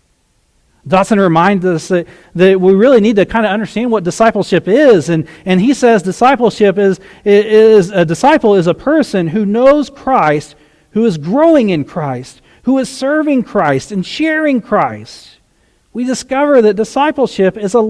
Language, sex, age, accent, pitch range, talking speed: English, male, 40-59, American, 170-235 Hz, 160 wpm